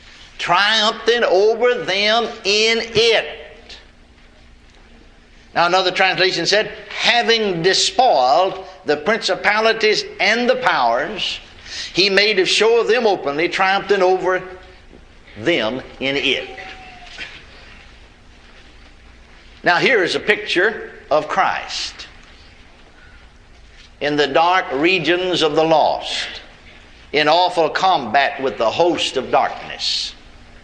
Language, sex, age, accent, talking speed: English, male, 60-79, American, 100 wpm